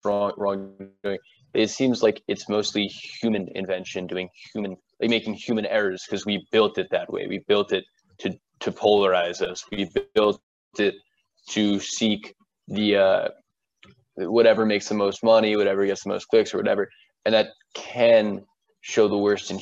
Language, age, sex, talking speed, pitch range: English, 20-39, male, 160 wpm, 100-115 Hz